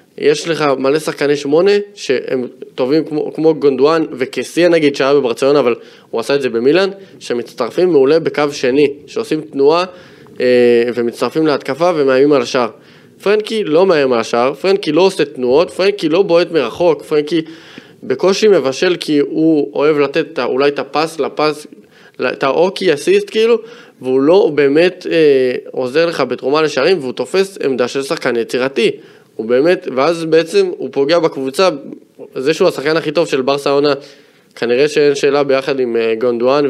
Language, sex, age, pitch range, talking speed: Hebrew, male, 20-39, 140-225 Hz, 155 wpm